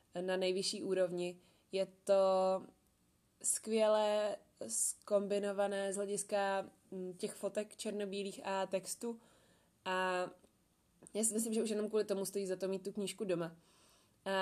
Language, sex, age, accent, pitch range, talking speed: Czech, female, 20-39, native, 190-210 Hz, 130 wpm